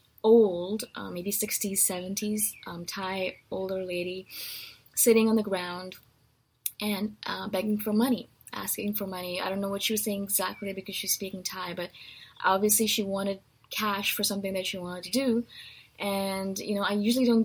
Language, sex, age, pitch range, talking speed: English, female, 20-39, 185-220 Hz, 175 wpm